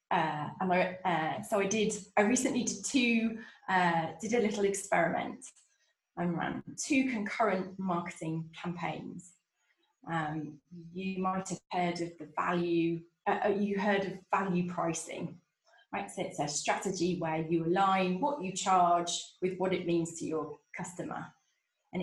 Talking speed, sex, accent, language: 150 wpm, female, British, English